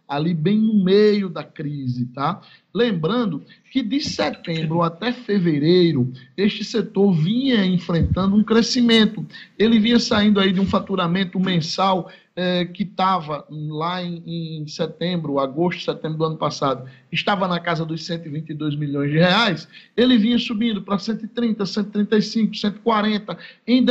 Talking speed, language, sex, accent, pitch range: 135 wpm, Portuguese, male, Brazilian, 165-210 Hz